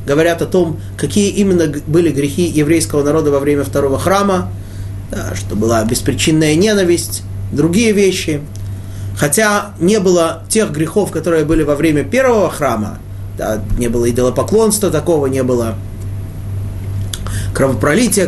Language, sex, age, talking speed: Russian, male, 30-49, 125 wpm